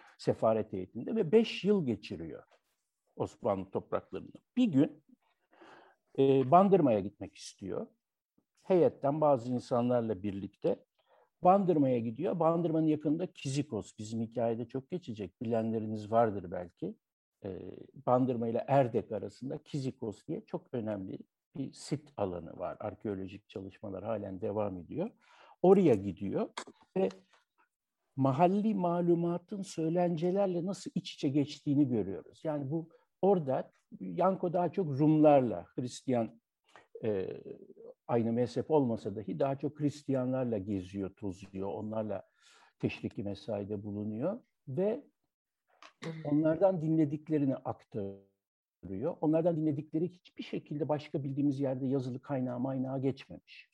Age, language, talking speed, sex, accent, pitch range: 60-79, Turkish, 105 wpm, male, native, 110-170 Hz